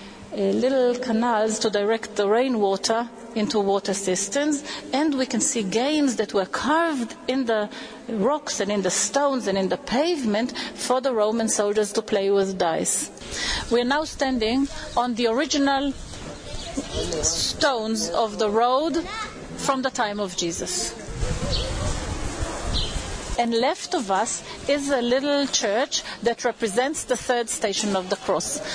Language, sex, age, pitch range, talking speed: English, female, 40-59, 215-275 Hz, 140 wpm